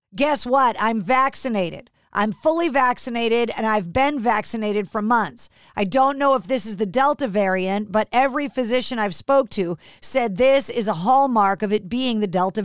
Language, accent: English, American